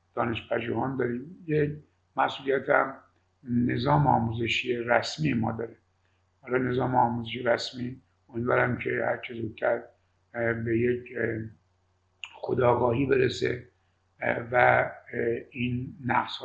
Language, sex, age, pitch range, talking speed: Persian, male, 50-69, 115-130 Hz, 90 wpm